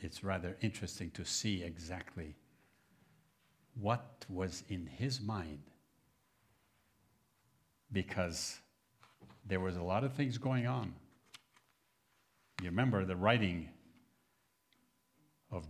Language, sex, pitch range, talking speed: English, male, 100-150 Hz, 95 wpm